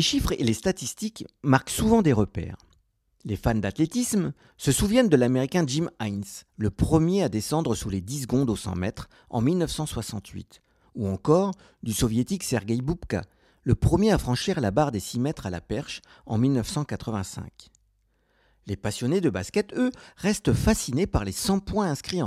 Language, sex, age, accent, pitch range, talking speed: French, male, 50-69, French, 105-175 Hz, 170 wpm